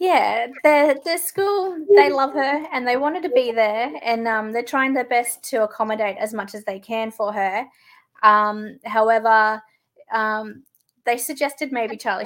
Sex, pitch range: female, 210-265 Hz